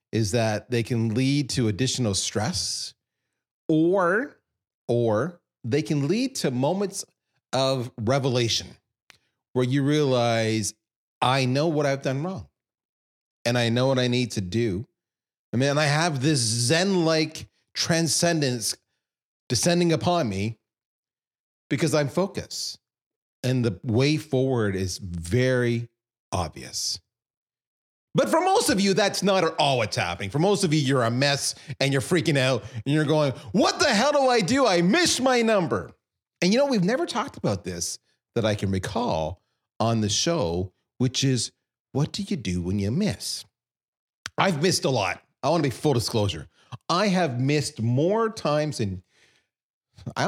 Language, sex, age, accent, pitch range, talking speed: English, male, 30-49, American, 115-165 Hz, 155 wpm